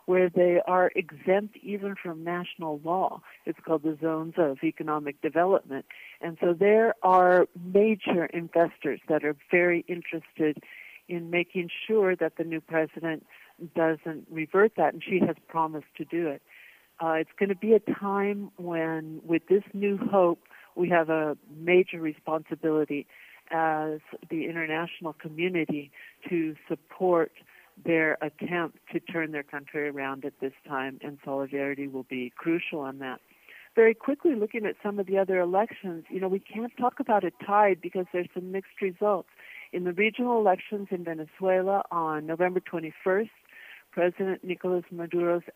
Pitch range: 160-195 Hz